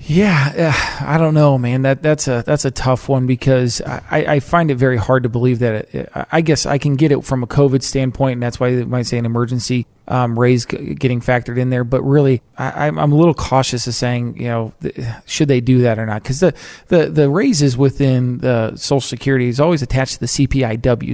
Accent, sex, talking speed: American, male, 230 wpm